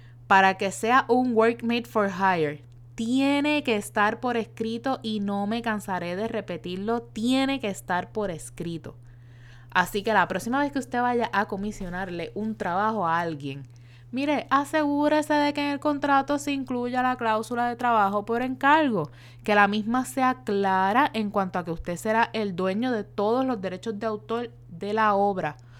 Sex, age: female, 20-39